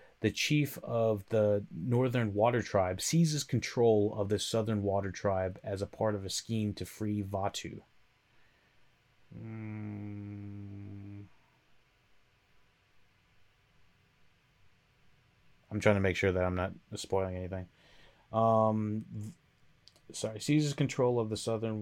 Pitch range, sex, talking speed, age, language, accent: 95-110 Hz, male, 115 wpm, 30-49, English, American